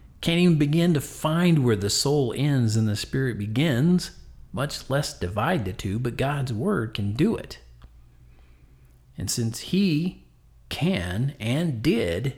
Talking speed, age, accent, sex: 145 wpm, 40-59, American, male